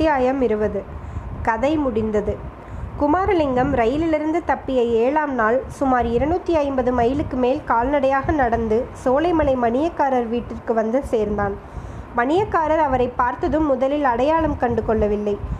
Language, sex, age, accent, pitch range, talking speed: Tamil, female, 20-39, native, 240-310 Hz, 100 wpm